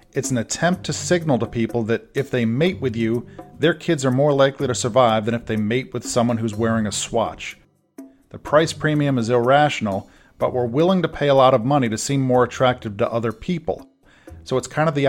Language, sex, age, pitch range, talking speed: English, male, 40-59, 115-150 Hz, 225 wpm